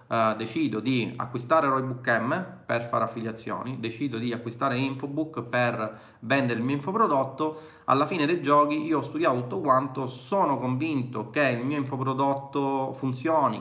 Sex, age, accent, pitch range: male, 30-49, native, 120-145 Hz